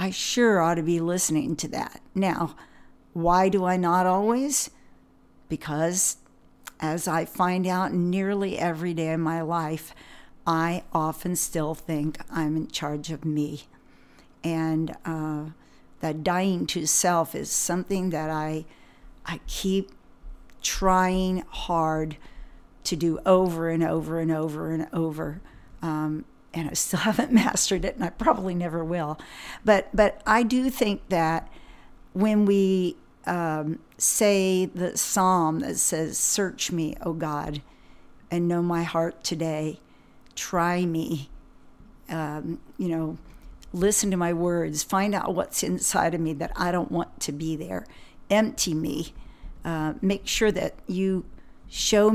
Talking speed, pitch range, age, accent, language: 140 wpm, 160-185 Hz, 50-69, American, English